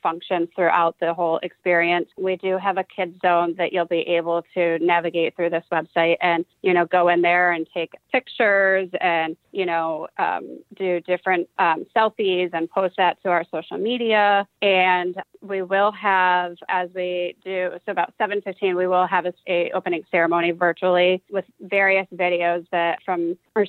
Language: English